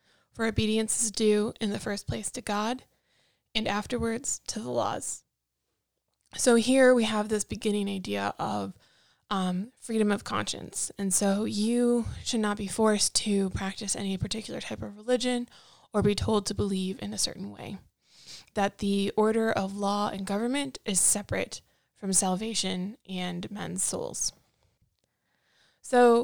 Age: 20-39